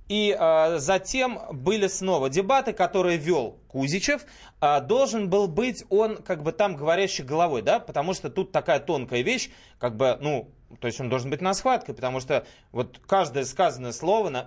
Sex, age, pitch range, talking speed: male, 20-39, 130-205 Hz, 175 wpm